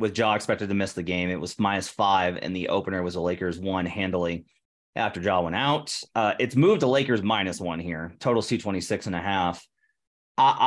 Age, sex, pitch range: 30-49, male, 95-120 Hz